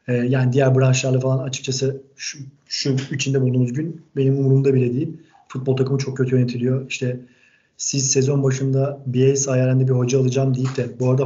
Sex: male